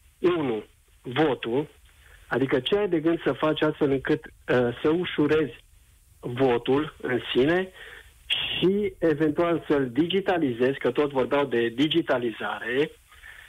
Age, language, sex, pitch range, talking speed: 50-69, Romanian, male, 130-165 Hz, 115 wpm